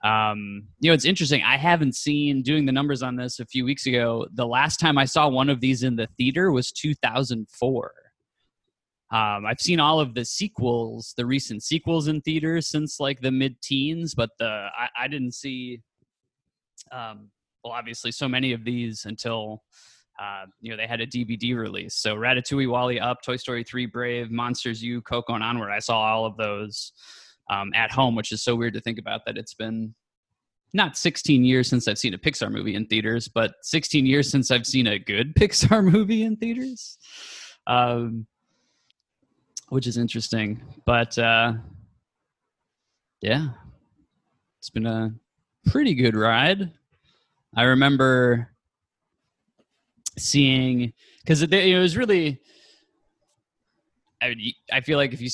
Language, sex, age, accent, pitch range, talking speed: English, male, 20-39, American, 115-140 Hz, 160 wpm